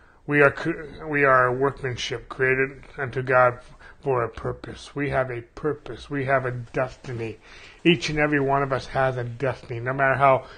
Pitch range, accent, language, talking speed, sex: 125-145 Hz, American, English, 180 wpm, male